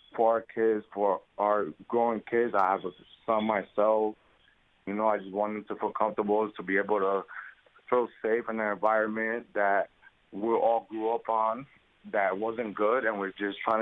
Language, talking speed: English, 185 wpm